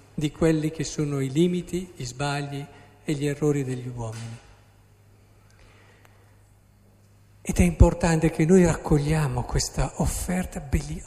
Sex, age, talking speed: male, 50-69, 120 wpm